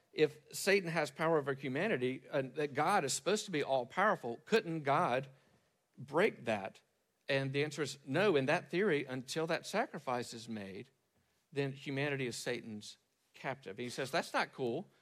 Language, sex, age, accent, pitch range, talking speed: English, male, 50-69, American, 125-170 Hz, 170 wpm